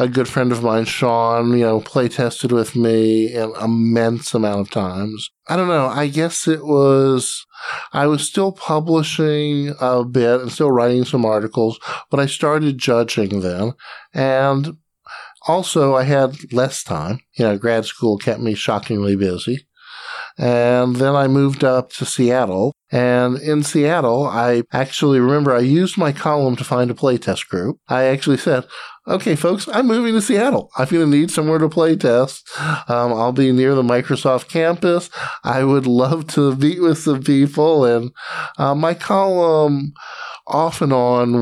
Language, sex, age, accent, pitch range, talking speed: English, male, 50-69, American, 120-150 Hz, 165 wpm